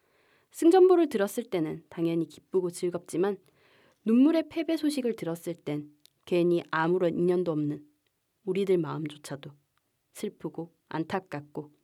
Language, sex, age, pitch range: Korean, female, 20-39, 160-210 Hz